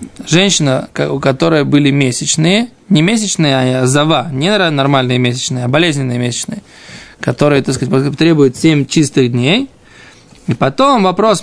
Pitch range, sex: 145-195 Hz, male